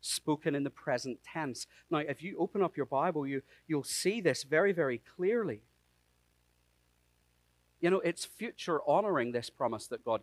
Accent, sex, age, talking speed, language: British, male, 40-59, 160 wpm, English